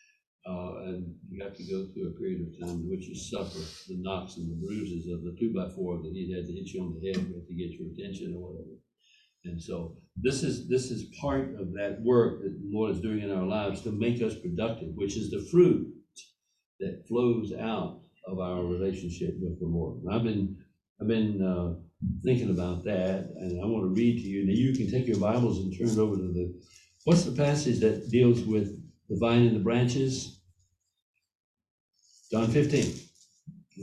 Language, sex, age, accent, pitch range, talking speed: English, male, 60-79, American, 90-120 Hz, 205 wpm